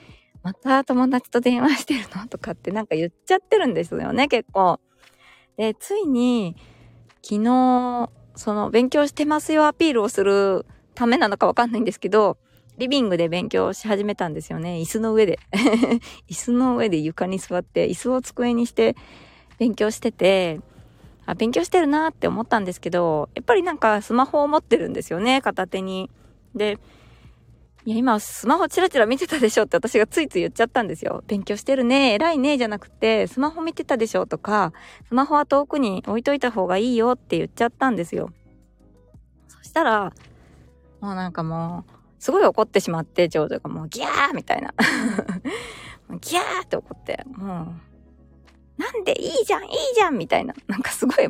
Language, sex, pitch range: Japanese, female, 190-280 Hz